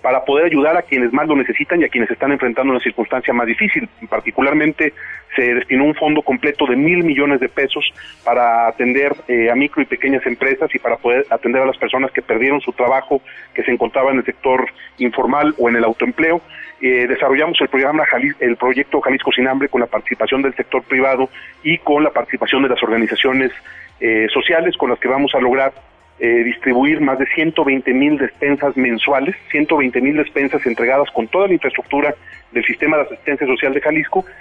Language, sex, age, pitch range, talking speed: Spanish, male, 40-59, 125-155 Hz, 190 wpm